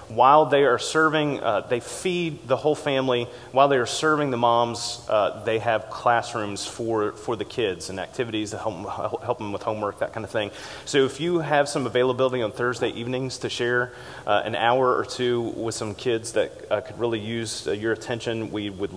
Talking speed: 205 wpm